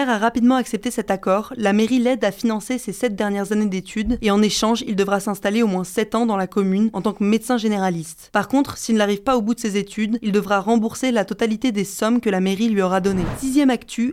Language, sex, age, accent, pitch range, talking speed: French, female, 20-39, French, 205-240 Hz, 245 wpm